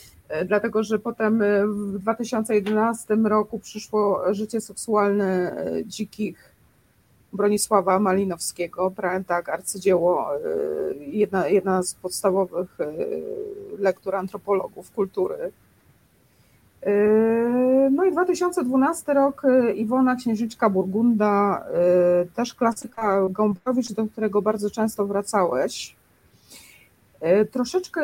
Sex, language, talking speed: female, Polish, 80 wpm